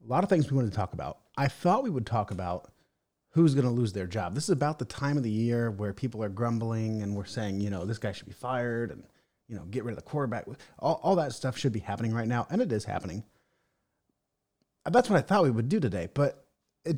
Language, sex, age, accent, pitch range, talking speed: English, male, 30-49, American, 110-140 Hz, 260 wpm